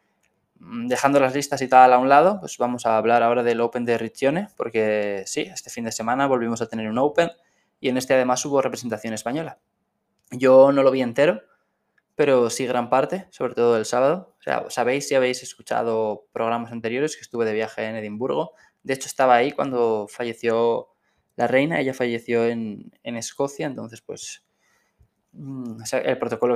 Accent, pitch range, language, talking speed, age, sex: Spanish, 110-130 Hz, Spanish, 180 wpm, 20-39, male